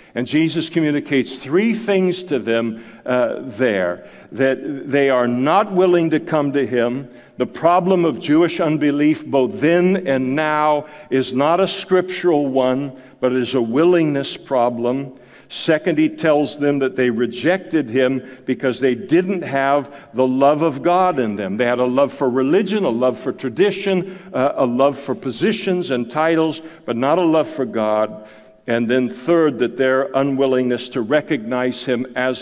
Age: 60-79